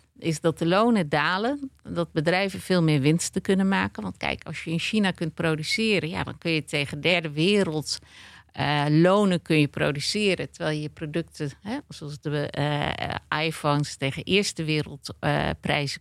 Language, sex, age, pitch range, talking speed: Dutch, female, 50-69, 155-190 Hz, 160 wpm